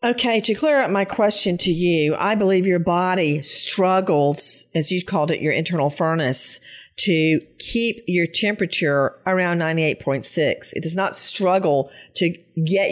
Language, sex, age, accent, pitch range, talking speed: English, female, 50-69, American, 170-250 Hz, 150 wpm